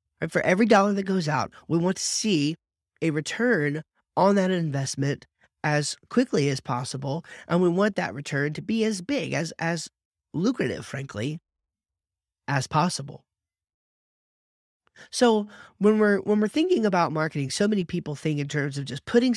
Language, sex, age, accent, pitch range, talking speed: English, male, 30-49, American, 135-175 Hz, 160 wpm